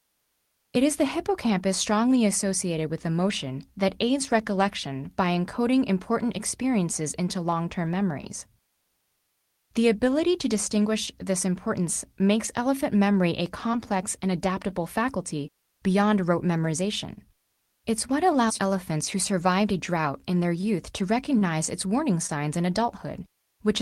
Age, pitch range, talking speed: 20-39, 175-230 Hz, 135 wpm